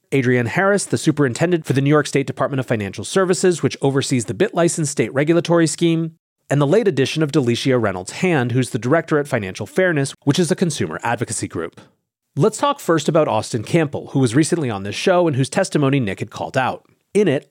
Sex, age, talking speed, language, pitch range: male, 30-49, 205 wpm, English, 125-170 Hz